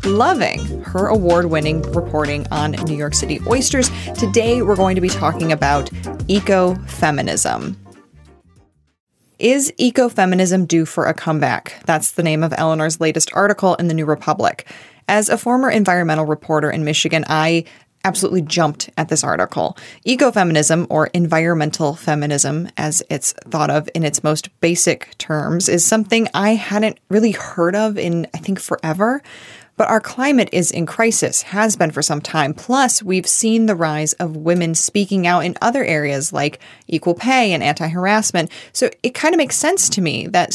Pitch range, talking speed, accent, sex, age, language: 155-195 Hz, 160 wpm, American, female, 20-39, English